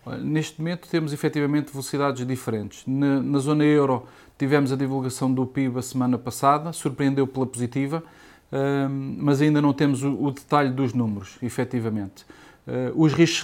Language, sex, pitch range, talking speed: Portuguese, male, 130-145 Hz, 145 wpm